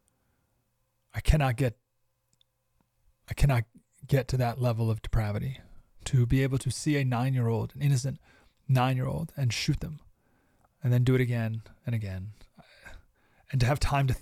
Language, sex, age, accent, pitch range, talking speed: English, male, 30-49, American, 115-140 Hz, 150 wpm